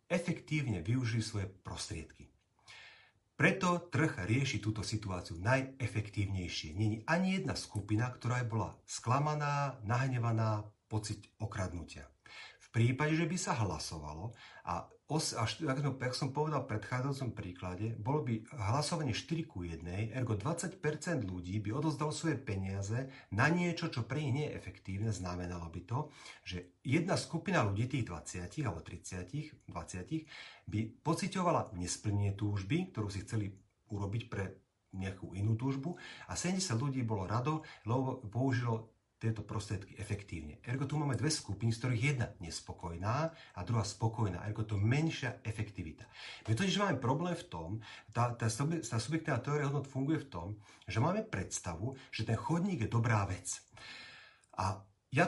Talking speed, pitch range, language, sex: 145 wpm, 100-145 Hz, Slovak, male